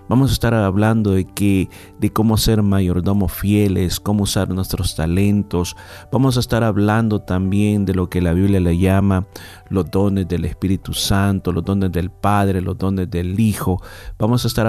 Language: Spanish